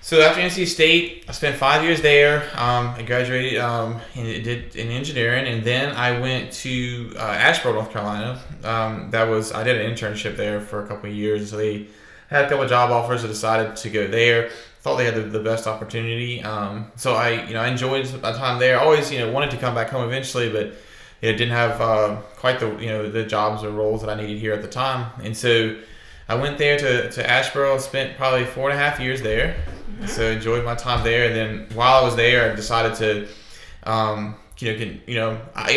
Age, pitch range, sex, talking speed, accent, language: 20-39, 110-125 Hz, male, 235 wpm, American, English